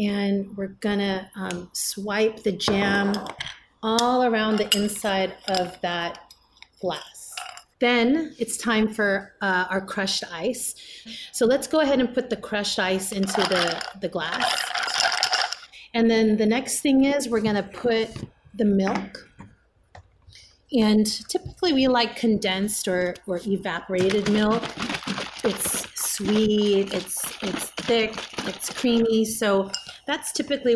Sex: female